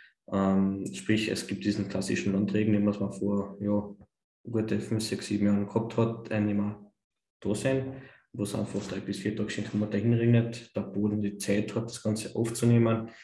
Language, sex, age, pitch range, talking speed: German, male, 20-39, 100-110 Hz, 175 wpm